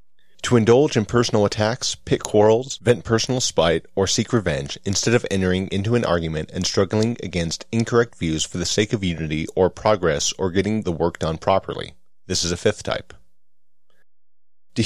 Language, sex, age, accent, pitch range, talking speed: English, male, 30-49, American, 85-110 Hz, 175 wpm